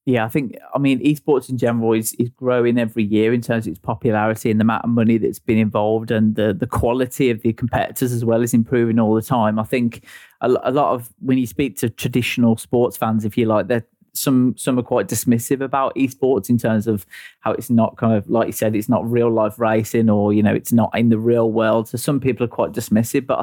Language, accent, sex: English, British, male